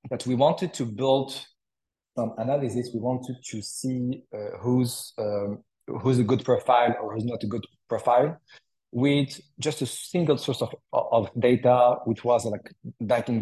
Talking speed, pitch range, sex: 160 wpm, 115-140 Hz, male